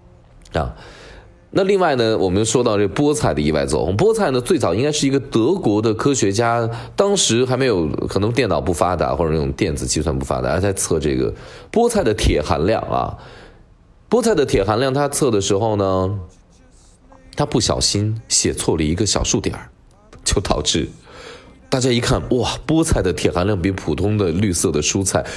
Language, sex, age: Chinese, male, 20-39